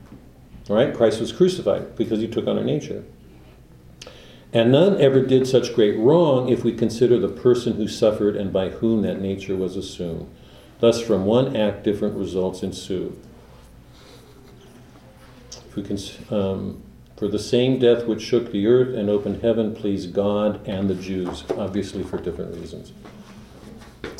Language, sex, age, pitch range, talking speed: English, male, 50-69, 100-135 Hz, 145 wpm